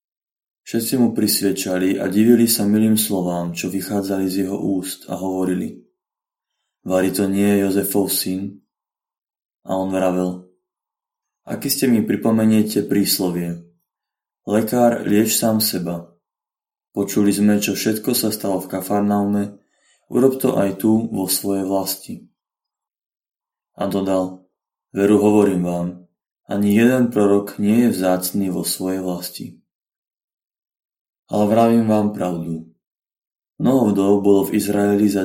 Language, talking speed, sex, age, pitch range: Slovak, 120 wpm, male, 20-39, 95-105 Hz